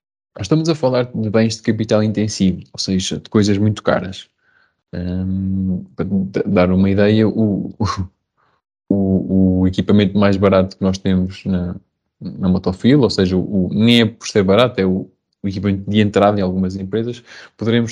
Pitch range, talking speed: 95-115 Hz, 165 wpm